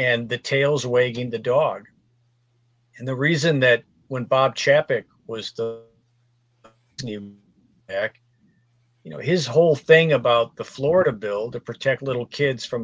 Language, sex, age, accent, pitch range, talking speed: English, male, 50-69, American, 120-145 Hz, 135 wpm